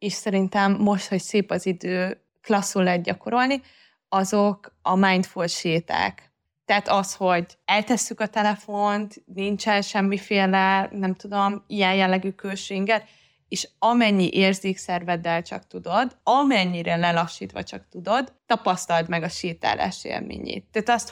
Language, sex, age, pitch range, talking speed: Hungarian, female, 20-39, 175-205 Hz, 120 wpm